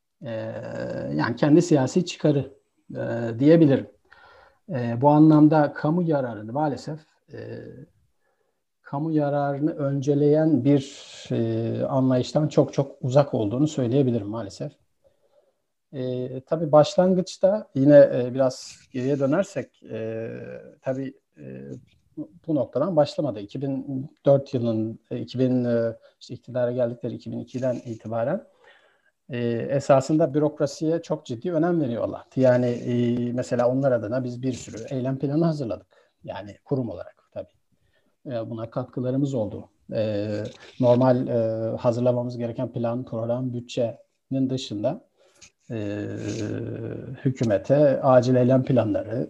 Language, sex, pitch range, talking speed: English, male, 115-145 Hz, 110 wpm